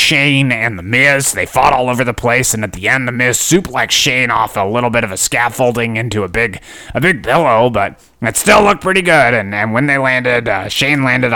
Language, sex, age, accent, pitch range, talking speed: English, male, 30-49, American, 110-145 Hz, 240 wpm